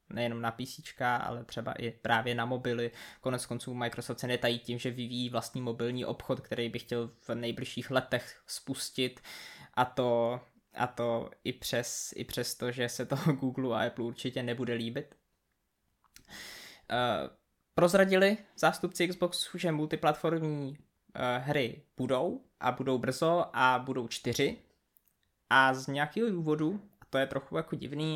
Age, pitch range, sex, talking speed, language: 20-39, 125-145 Hz, male, 145 wpm, Czech